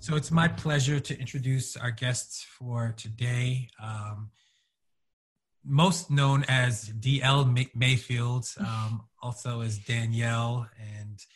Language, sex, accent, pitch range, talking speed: English, male, American, 115-130 Hz, 110 wpm